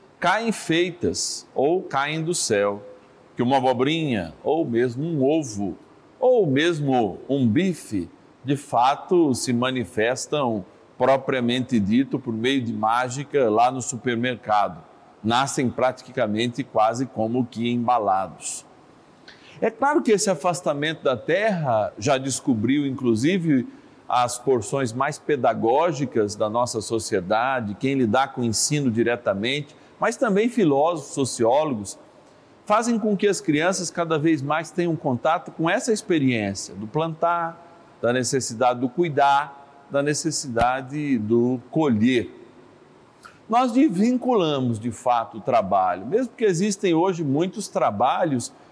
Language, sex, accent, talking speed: Portuguese, male, Brazilian, 120 wpm